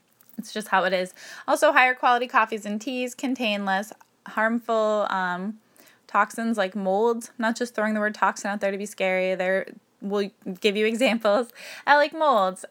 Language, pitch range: English, 195-245 Hz